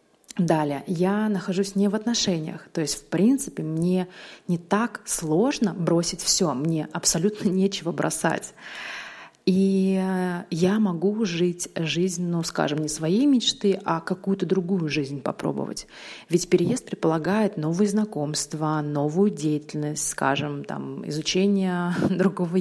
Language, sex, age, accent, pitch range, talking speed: Russian, female, 30-49, native, 165-195 Hz, 120 wpm